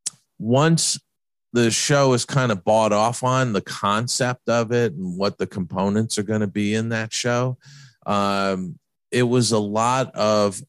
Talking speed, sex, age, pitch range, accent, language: 170 wpm, male, 40-59, 90-110 Hz, American, English